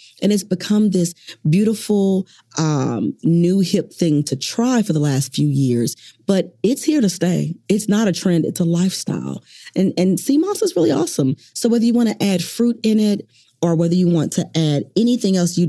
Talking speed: 205 wpm